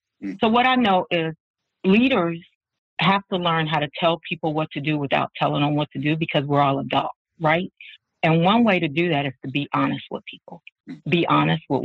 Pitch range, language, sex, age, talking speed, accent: 145-175 Hz, English, female, 50-69, 215 wpm, American